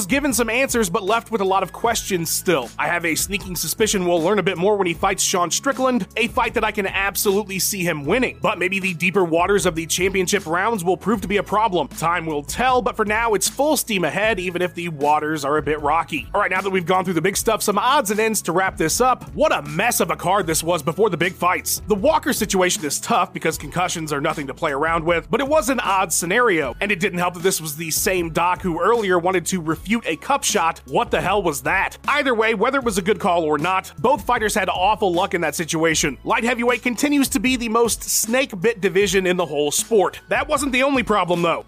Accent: American